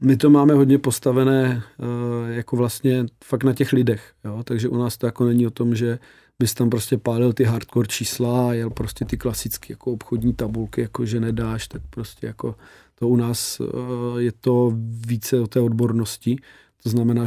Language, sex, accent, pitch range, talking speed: Czech, male, native, 115-125 Hz, 180 wpm